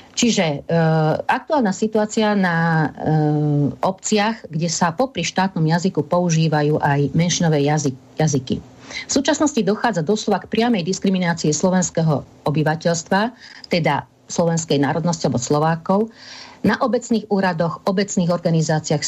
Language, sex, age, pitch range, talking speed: Slovak, female, 50-69, 155-195 Hz, 105 wpm